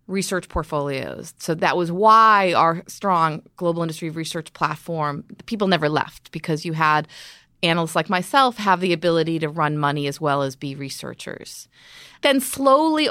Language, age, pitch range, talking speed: English, 30-49, 165-205 Hz, 155 wpm